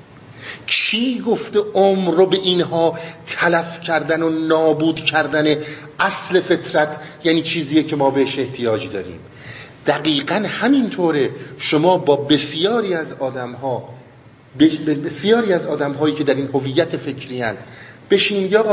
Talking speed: 115 wpm